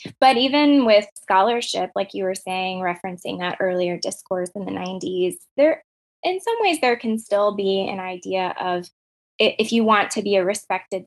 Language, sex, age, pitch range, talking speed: English, female, 20-39, 190-240 Hz, 180 wpm